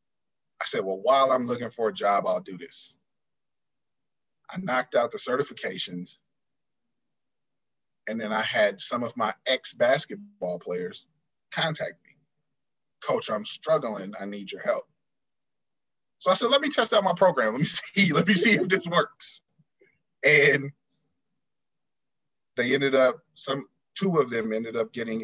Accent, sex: American, male